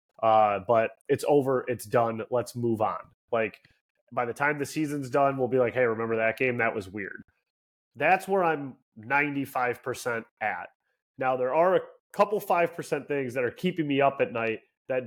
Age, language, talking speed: 30-49, English, 190 wpm